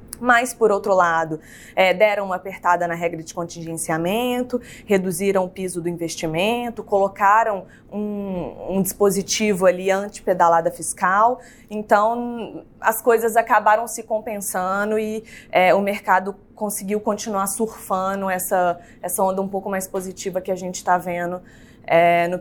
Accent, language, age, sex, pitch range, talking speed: Brazilian, Portuguese, 20-39, female, 180-230 Hz, 130 wpm